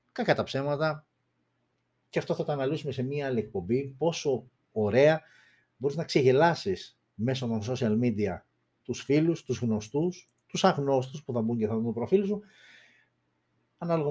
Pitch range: 110-145 Hz